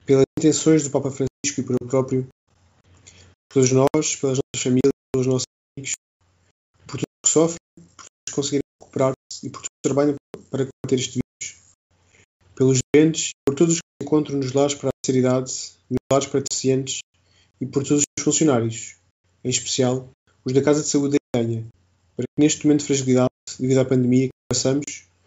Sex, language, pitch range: male, Portuguese, 105-140 Hz